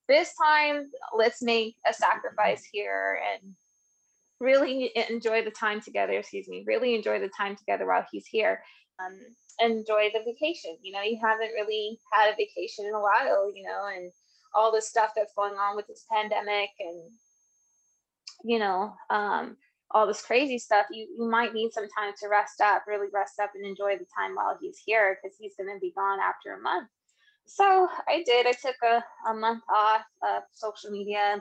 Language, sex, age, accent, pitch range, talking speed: English, female, 20-39, American, 200-245 Hz, 190 wpm